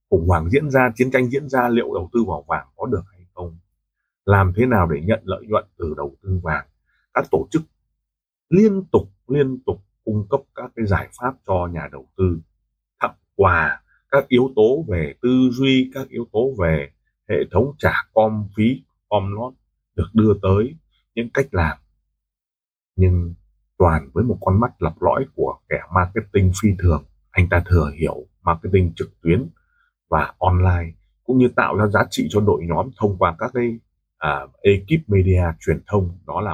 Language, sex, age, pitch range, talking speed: Vietnamese, male, 30-49, 90-120 Hz, 180 wpm